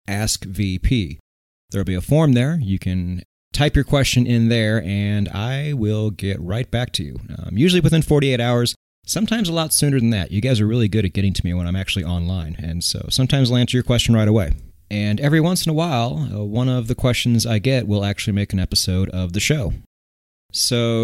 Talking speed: 220 wpm